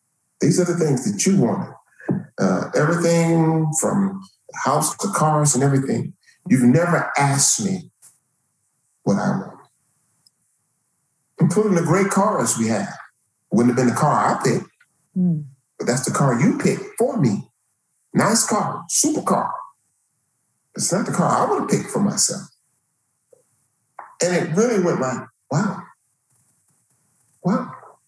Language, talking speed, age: English, 140 wpm, 50-69